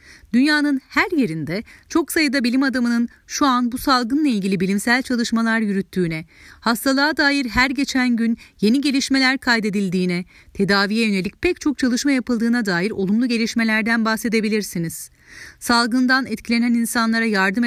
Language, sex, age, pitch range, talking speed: Turkish, female, 40-59, 190-245 Hz, 125 wpm